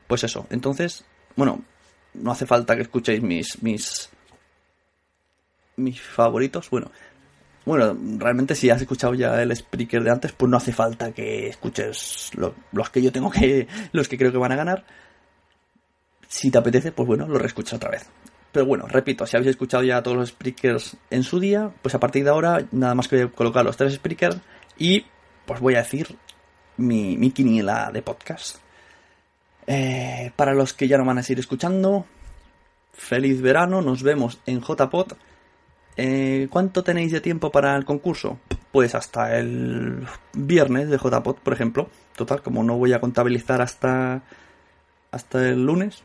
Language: Spanish